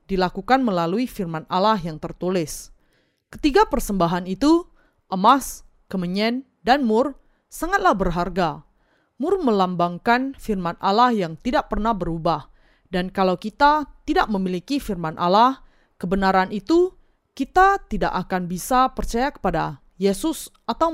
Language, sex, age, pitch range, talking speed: Indonesian, female, 20-39, 180-260 Hz, 115 wpm